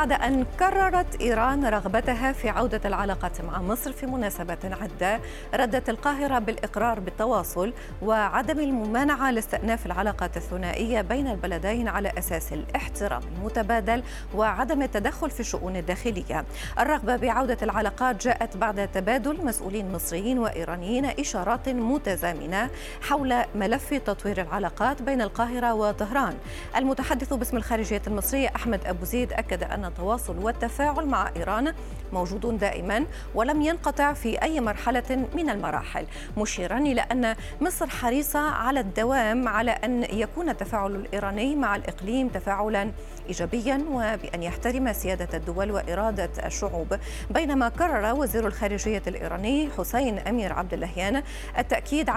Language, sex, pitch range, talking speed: Arabic, female, 200-260 Hz, 120 wpm